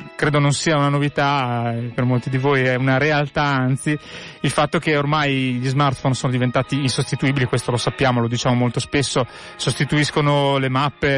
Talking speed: 170 wpm